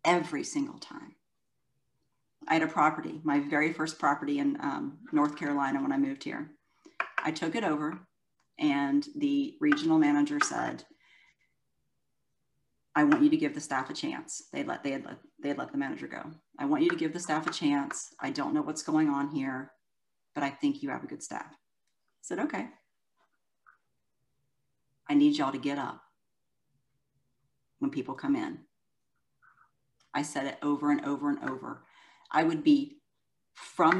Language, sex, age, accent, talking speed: English, female, 40-59, American, 170 wpm